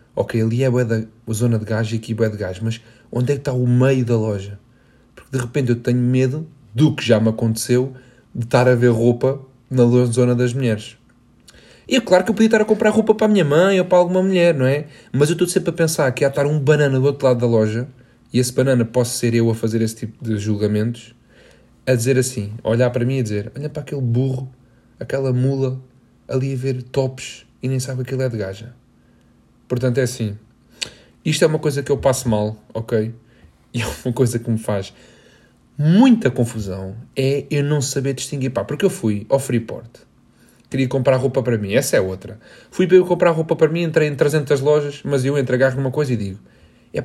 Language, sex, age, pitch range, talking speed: Portuguese, male, 20-39, 115-140 Hz, 225 wpm